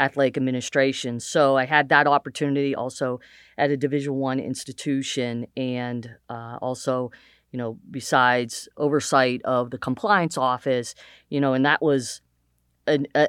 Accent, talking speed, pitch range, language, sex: American, 135 wpm, 125-145 Hz, English, female